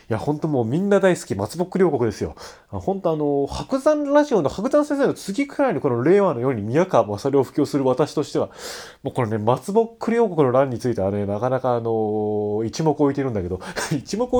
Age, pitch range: 20-39, 120-195 Hz